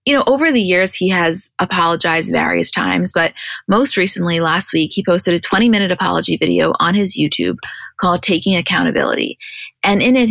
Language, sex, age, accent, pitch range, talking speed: English, female, 20-39, American, 170-200 Hz, 175 wpm